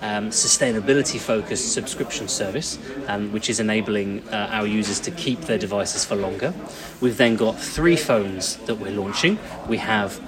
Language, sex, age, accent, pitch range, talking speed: Romanian, male, 30-49, British, 110-135 Hz, 170 wpm